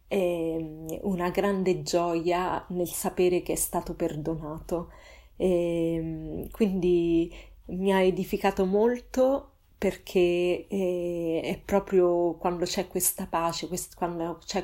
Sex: female